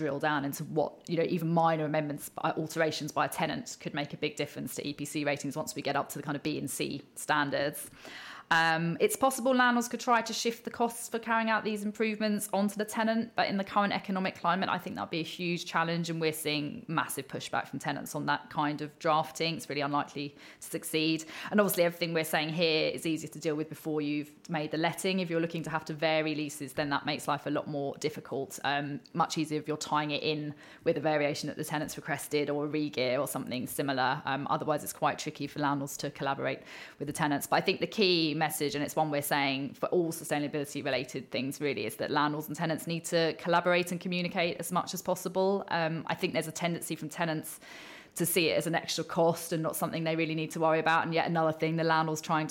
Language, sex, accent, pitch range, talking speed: English, female, British, 150-170 Hz, 240 wpm